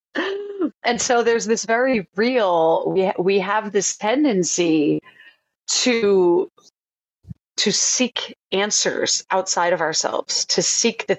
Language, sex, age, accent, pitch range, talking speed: English, female, 30-49, American, 165-200 Hz, 120 wpm